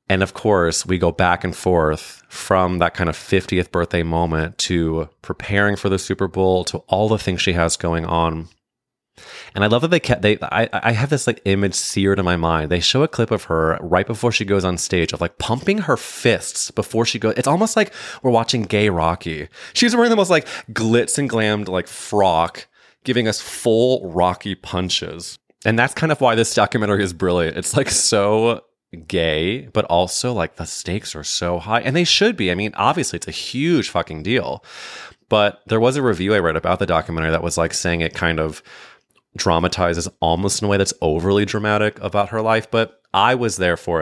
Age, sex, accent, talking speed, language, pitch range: 20-39, male, American, 210 wpm, English, 85-110 Hz